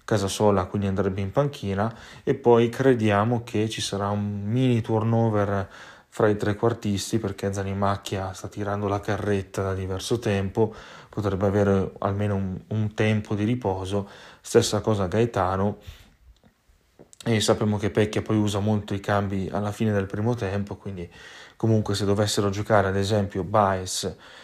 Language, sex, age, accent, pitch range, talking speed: Italian, male, 30-49, native, 95-110 Hz, 150 wpm